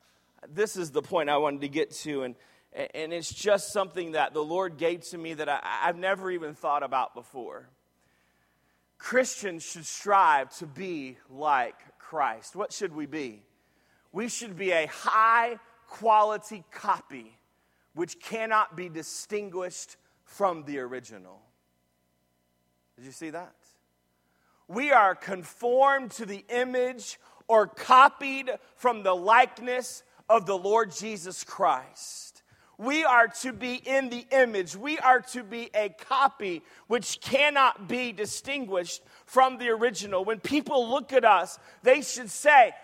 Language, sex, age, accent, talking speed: English, male, 30-49, American, 140 wpm